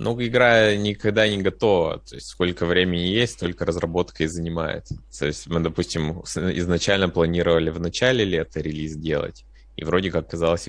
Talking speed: 155 wpm